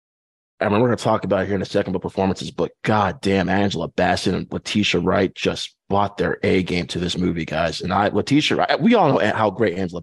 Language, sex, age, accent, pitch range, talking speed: English, male, 20-39, American, 90-105 Hz, 235 wpm